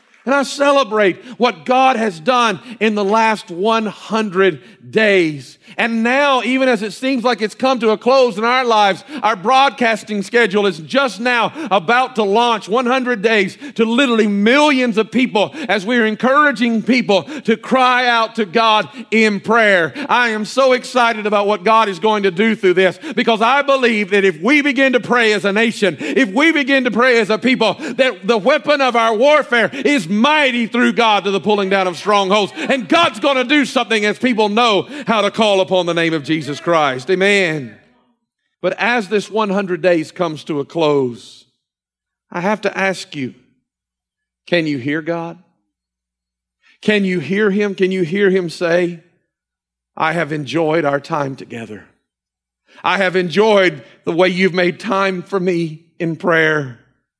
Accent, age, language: American, 50-69, English